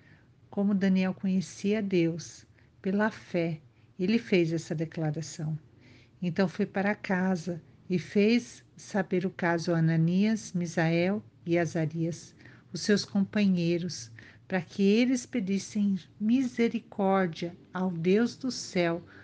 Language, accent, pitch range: Portuguese, Brazilian, 155-200 Hz